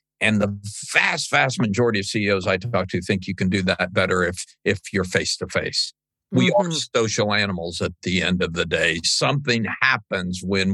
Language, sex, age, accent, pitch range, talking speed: English, male, 50-69, American, 95-120 Hz, 185 wpm